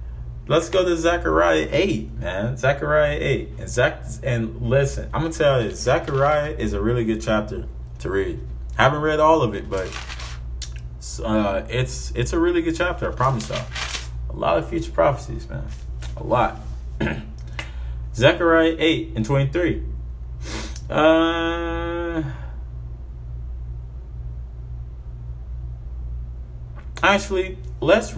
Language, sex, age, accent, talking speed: English, male, 20-39, American, 120 wpm